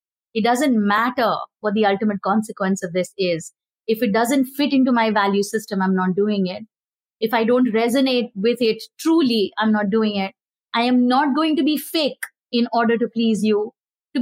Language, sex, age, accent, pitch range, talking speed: English, female, 20-39, Indian, 225-300 Hz, 195 wpm